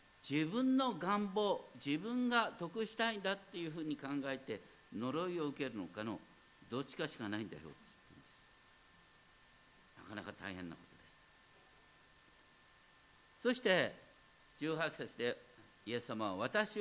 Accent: native